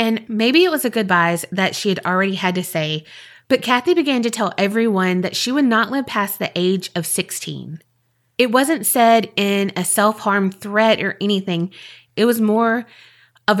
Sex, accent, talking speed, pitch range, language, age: female, American, 185 wpm, 180-230 Hz, English, 20-39